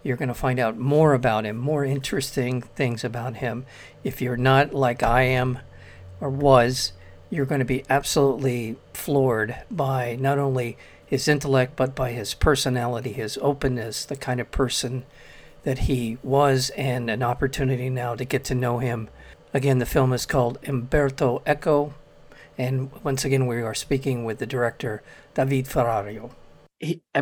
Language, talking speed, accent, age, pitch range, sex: English, 160 wpm, American, 50-69, 125-145 Hz, male